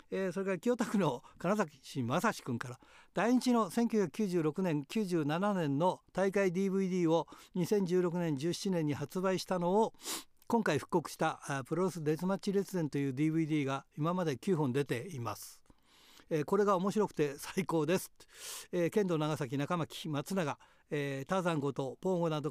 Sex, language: male, Japanese